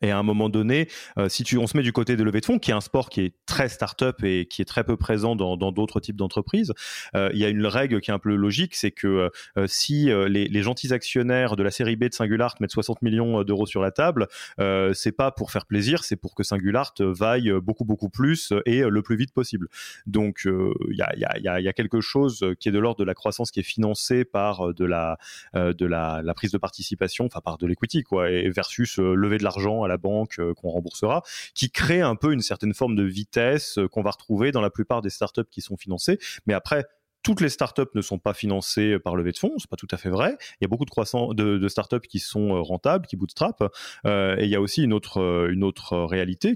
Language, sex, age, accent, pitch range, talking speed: French, male, 30-49, French, 95-120 Hz, 250 wpm